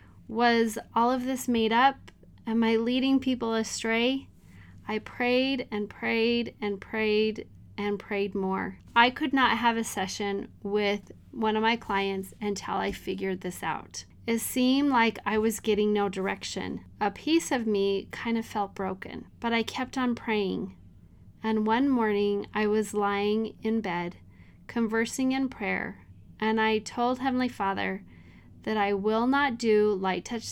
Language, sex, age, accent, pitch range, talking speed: English, female, 30-49, American, 195-230 Hz, 155 wpm